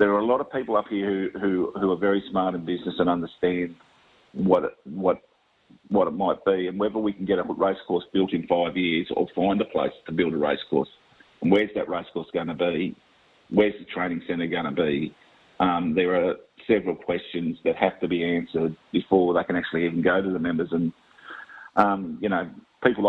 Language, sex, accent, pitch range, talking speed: English, male, Australian, 90-105 Hz, 215 wpm